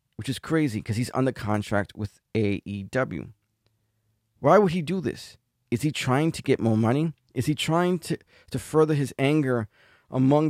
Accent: American